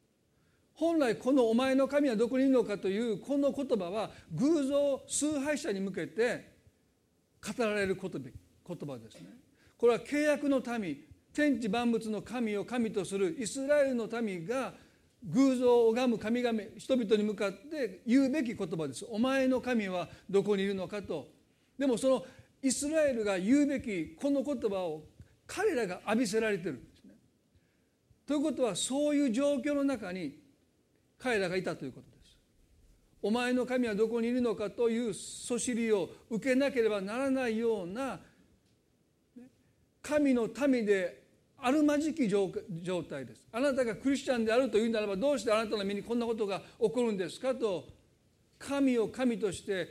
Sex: male